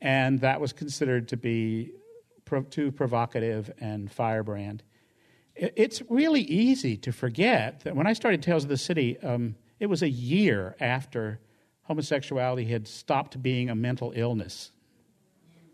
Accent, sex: American, male